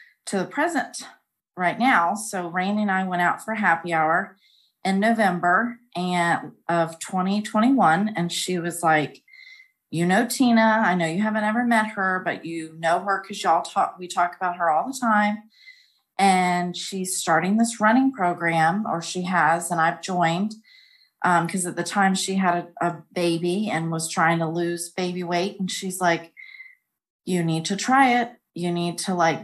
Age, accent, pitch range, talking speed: 30-49, American, 170-215 Hz, 180 wpm